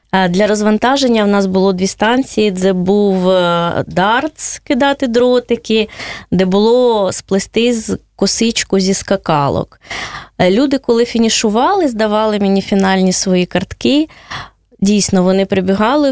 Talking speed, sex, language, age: 110 wpm, female, Russian, 20-39